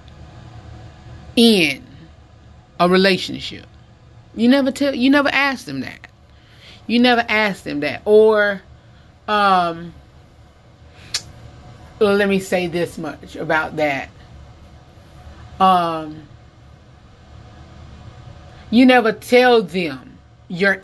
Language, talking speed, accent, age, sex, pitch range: English, 90 wpm, American, 30-49, female, 190-240 Hz